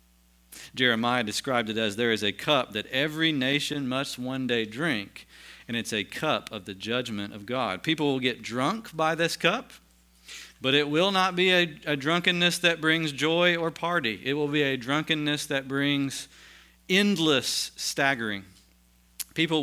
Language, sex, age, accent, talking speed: English, male, 40-59, American, 165 wpm